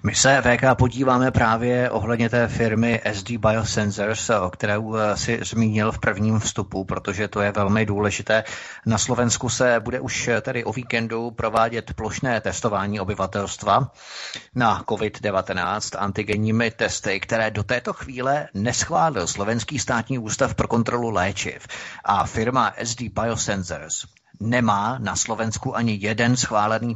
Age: 30-49